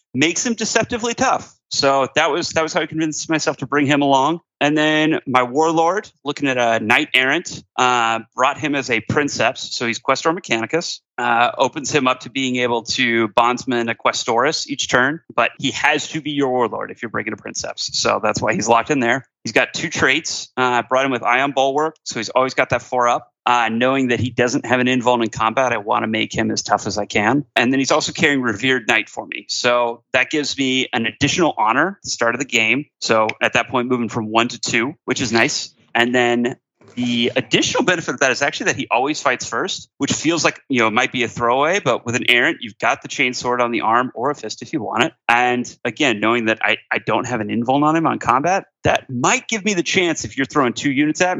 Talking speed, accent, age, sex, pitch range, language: 245 wpm, American, 30-49, male, 120-150 Hz, English